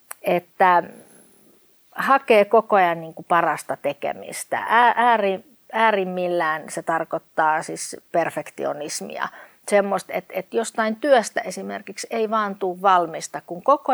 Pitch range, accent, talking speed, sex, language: 165-220 Hz, native, 110 wpm, female, Finnish